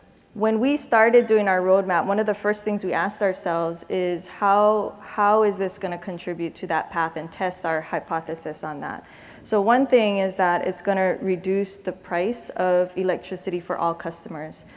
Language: English